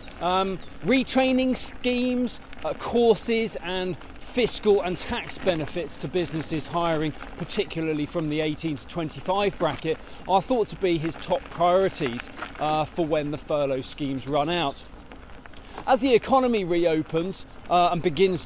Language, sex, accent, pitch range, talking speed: English, male, British, 150-195 Hz, 135 wpm